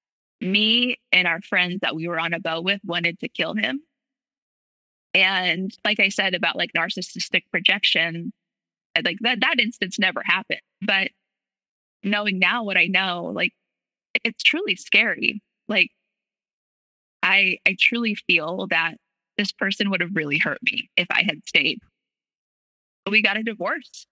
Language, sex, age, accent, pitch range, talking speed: English, female, 20-39, American, 175-220 Hz, 150 wpm